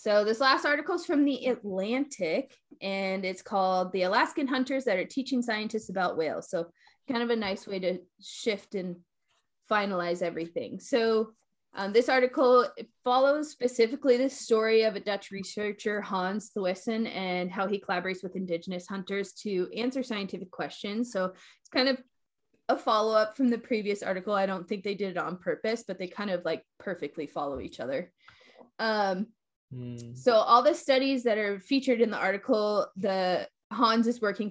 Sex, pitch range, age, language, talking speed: female, 185-230 Hz, 20-39, English, 170 wpm